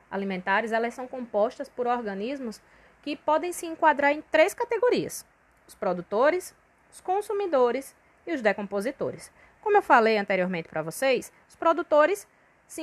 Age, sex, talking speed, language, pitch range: 20-39, female, 135 wpm, Portuguese, 185-275 Hz